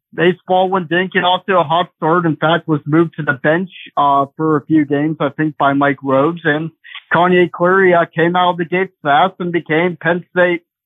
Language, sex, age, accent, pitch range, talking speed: English, male, 50-69, American, 155-185 Hz, 215 wpm